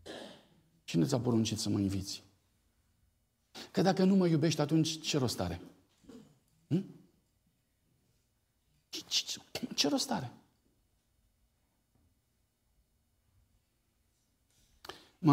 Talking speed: 75 wpm